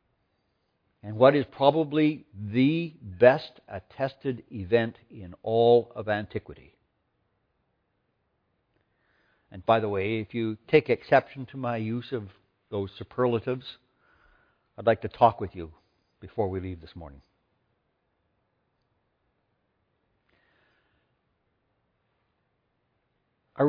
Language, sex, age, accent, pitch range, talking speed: English, male, 60-79, American, 100-135 Hz, 95 wpm